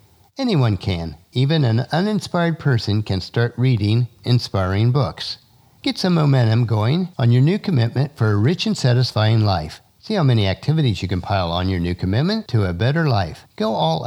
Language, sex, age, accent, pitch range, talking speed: English, male, 50-69, American, 105-145 Hz, 180 wpm